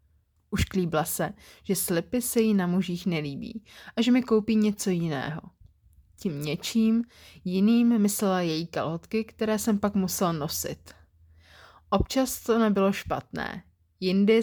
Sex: female